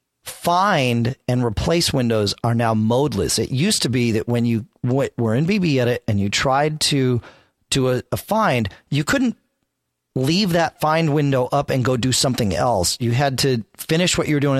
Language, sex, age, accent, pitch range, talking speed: English, male, 40-59, American, 110-145 Hz, 190 wpm